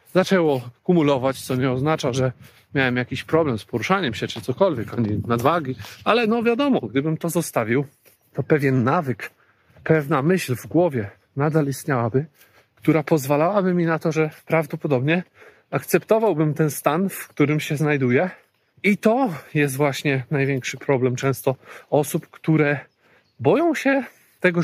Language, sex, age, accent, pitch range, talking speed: Polish, male, 40-59, native, 125-160 Hz, 140 wpm